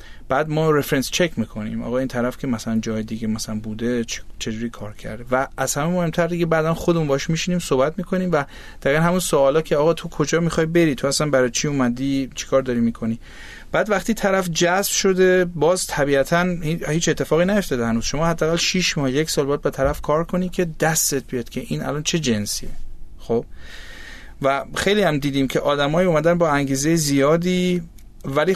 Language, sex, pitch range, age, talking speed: Persian, male, 125-170 Hz, 30-49, 185 wpm